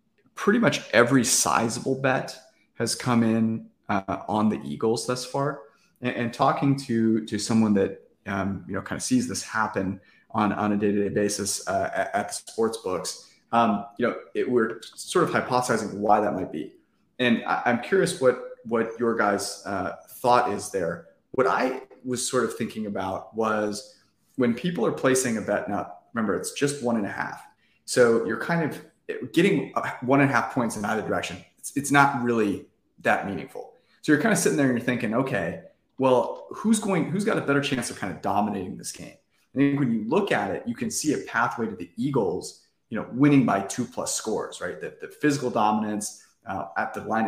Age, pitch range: 30-49, 105-140 Hz